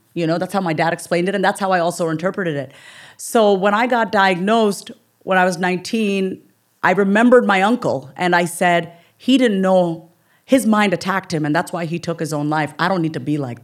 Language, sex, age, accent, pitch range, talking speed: English, female, 40-59, American, 160-195 Hz, 230 wpm